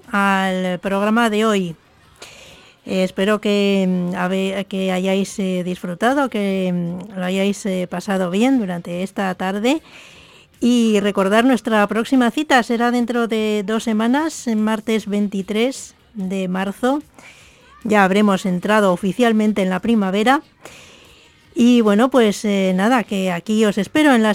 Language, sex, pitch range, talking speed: English, female, 195-235 Hz, 130 wpm